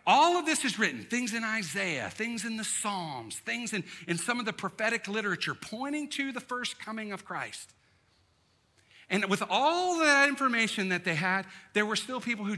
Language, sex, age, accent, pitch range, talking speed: English, male, 50-69, American, 170-225 Hz, 190 wpm